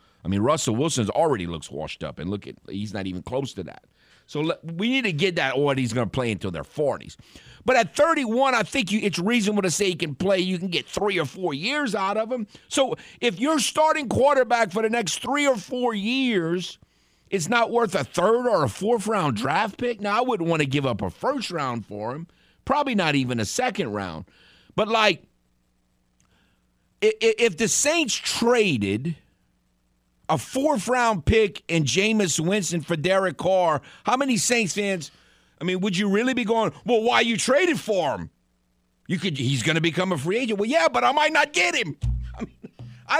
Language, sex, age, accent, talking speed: English, male, 50-69, American, 205 wpm